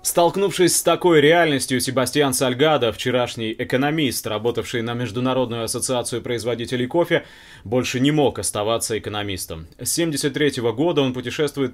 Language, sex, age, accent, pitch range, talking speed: Russian, male, 20-39, native, 115-145 Hz, 125 wpm